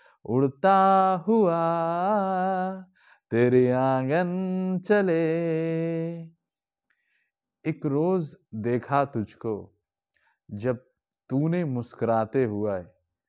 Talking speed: 60 wpm